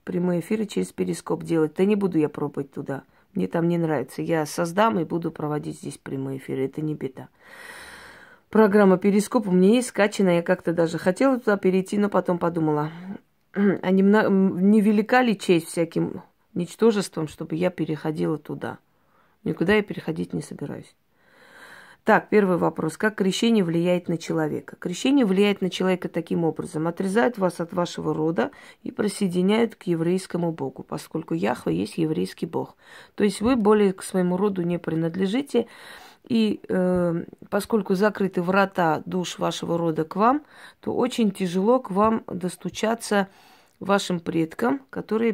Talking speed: 150 wpm